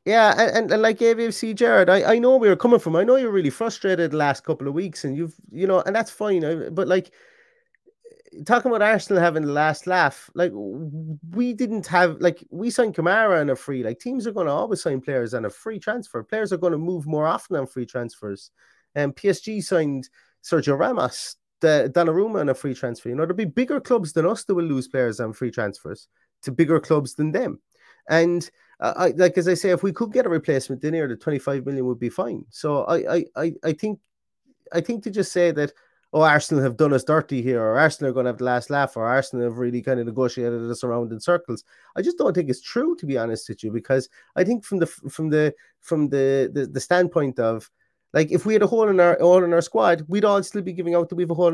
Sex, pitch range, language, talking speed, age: male, 140-200 Hz, English, 240 wpm, 30-49